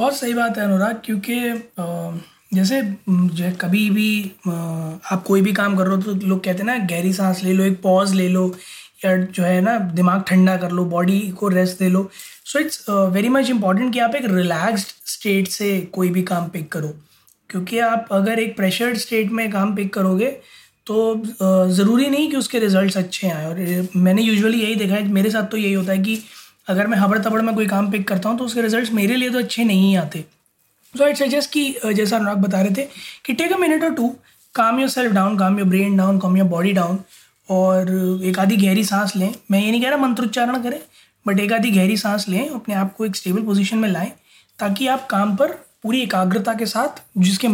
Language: Hindi